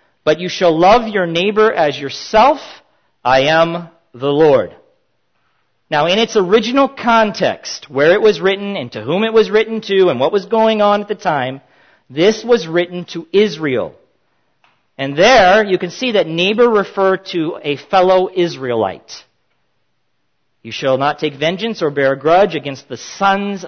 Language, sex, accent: English, male, American